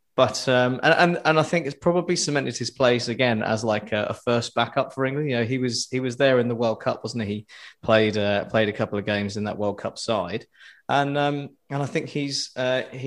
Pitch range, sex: 105-130 Hz, male